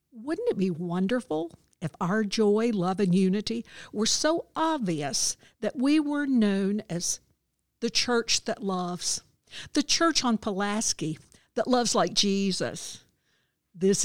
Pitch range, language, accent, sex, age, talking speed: 185-225 Hz, English, American, female, 60-79, 130 wpm